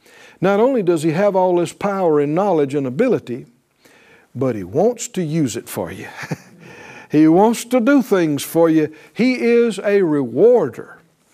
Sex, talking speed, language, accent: male, 165 wpm, English, American